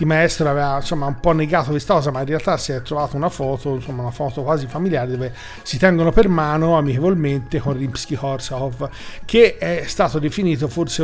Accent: native